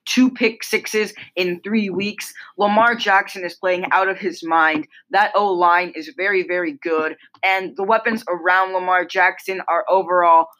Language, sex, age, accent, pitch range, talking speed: English, female, 20-39, American, 170-215 Hz, 160 wpm